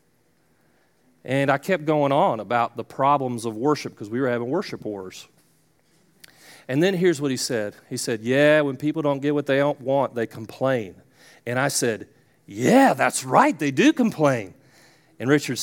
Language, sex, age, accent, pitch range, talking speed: English, male, 40-59, American, 115-150 Hz, 175 wpm